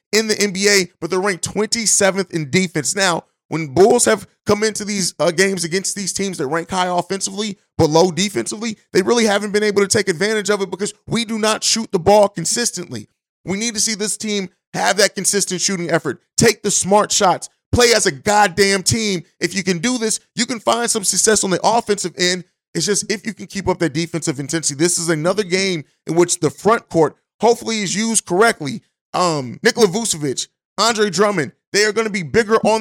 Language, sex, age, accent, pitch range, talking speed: English, male, 30-49, American, 175-210 Hz, 210 wpm